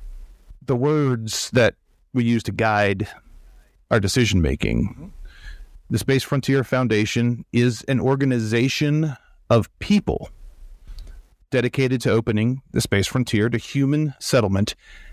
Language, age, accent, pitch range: English, 40-59, American, 95-130 Hz